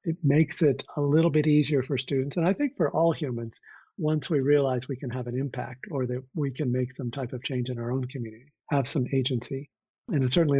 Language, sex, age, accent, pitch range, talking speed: English, male, 50-69, American, 125-155 Hz, 230 wpm